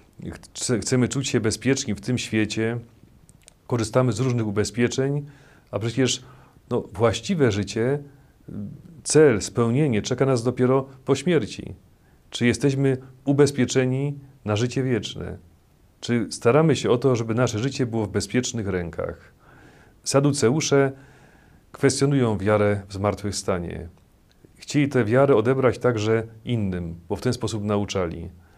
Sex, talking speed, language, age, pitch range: male, 120 wpm, Polish, 40-59, 105-130 Hz